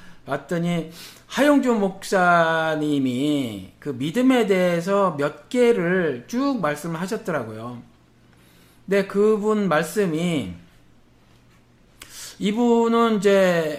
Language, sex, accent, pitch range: Korean, male, native, 135-200 Hz